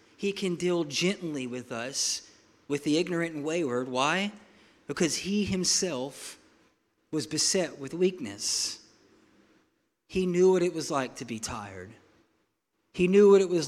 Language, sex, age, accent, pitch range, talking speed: English, male, 40-59, American, 140-180 Hz, 145 wpm